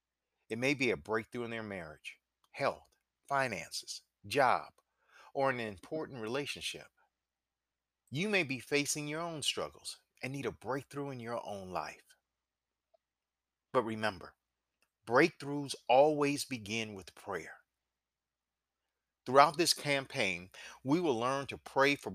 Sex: male